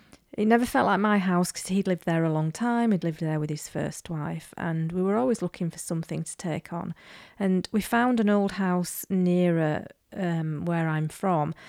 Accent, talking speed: British, 210 wpm